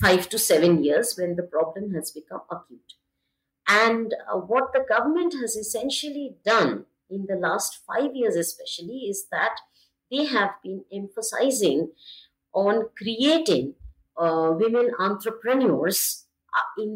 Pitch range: 175-230 Hz